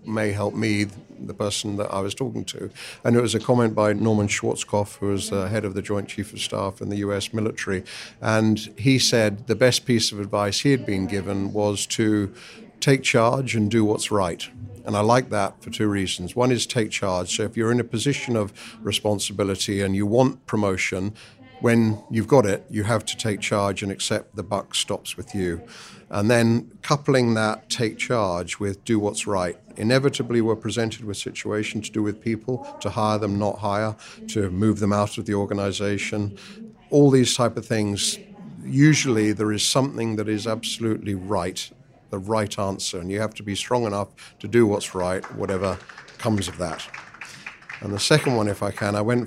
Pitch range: 100-120 Hz